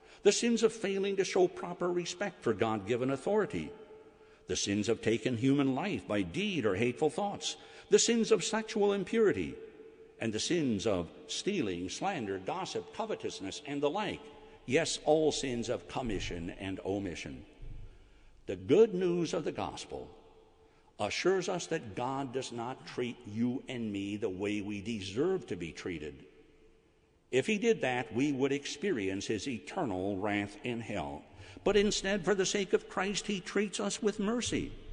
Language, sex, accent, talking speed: English, male, American, 160 wpm